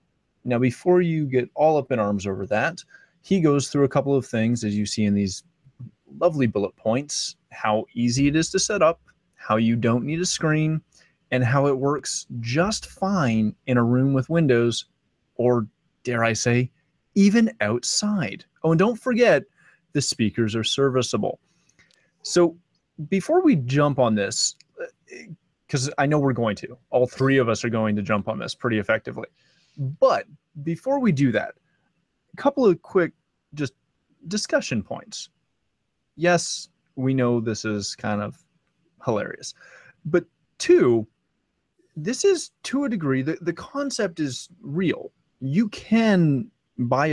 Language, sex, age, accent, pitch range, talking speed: English, male, 30-49, American, 120-170 Hz, 155 wpm